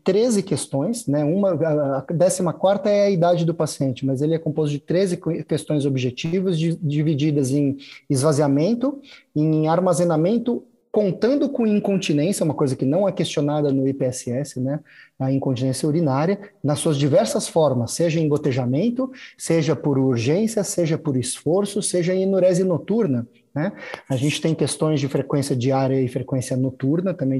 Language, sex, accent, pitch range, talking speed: Portuguese, male, Brazilian, 145-200 Hz, 155 wpm